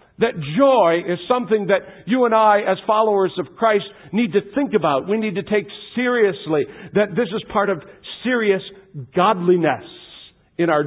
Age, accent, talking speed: 50-69, American, 165 wpm